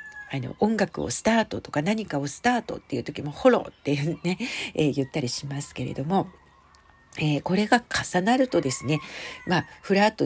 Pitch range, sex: 130-215 Hz, female